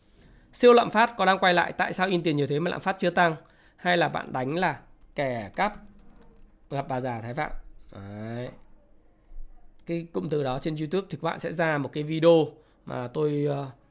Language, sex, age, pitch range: Vietnamese, male, 20-39, 140-195 Hz